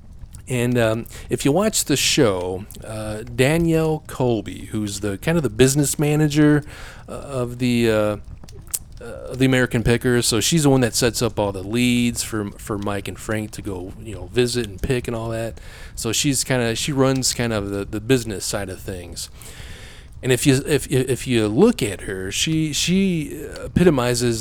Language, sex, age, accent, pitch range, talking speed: English, male, 30-49, American, 105-140 Hz, 185 wpm